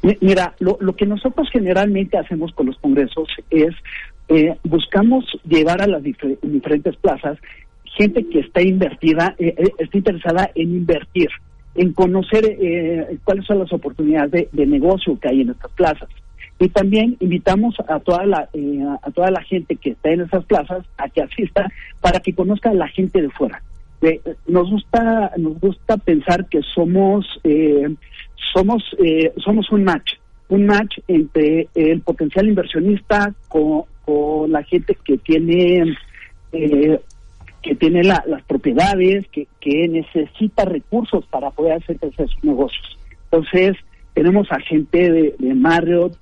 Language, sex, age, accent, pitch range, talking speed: Spanish, male, 50-69, Mexican, 155-195 Hz, 155 wpm